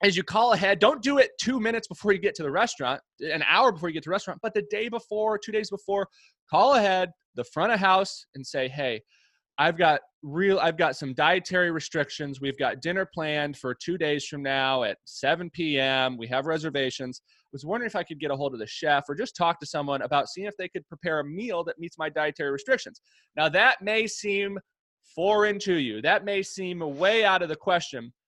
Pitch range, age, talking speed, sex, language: 145-205 Hz, 20-39, 225 wpm, male, English